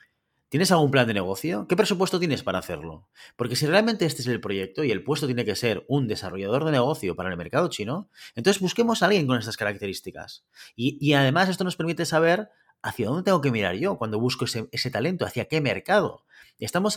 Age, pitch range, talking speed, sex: 30-49, 120-150 Hz, 210 wpm, male